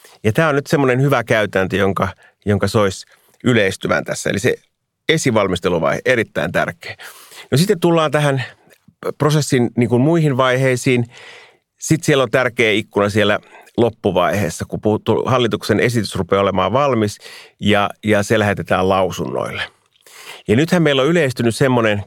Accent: native